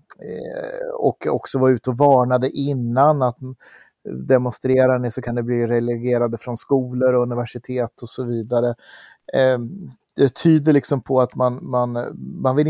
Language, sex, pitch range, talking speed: English, male, 120-140 Hz, 135 wpm